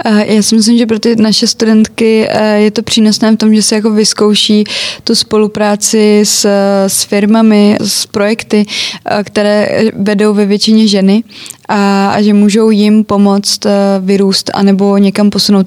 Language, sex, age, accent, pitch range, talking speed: Czech, female, 20-39, native, 200-215 Hz, 155 wpm